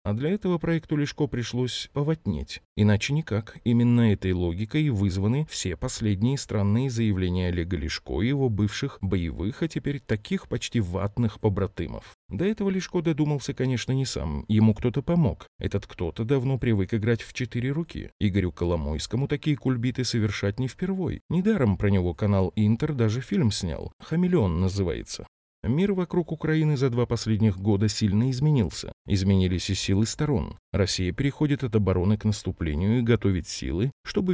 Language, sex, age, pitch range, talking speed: Russian, male, 30-49, 95-135 Hz, 150 wpm